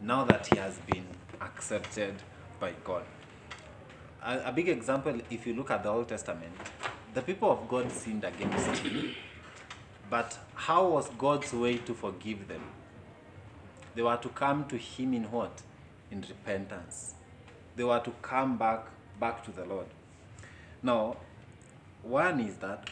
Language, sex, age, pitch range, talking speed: English, male, 30-49, 105-125 Hz, 150 wpm